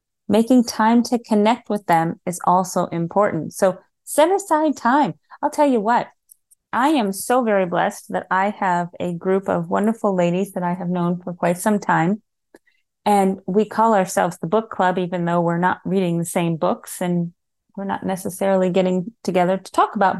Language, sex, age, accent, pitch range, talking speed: English, female, 30-49, American, 180-230 Hz, 185 wpm